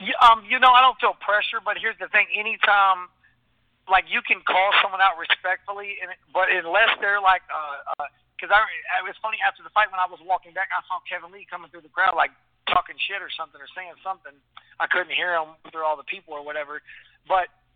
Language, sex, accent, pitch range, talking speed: English, male, American, 165-190 Hz, 225 wpm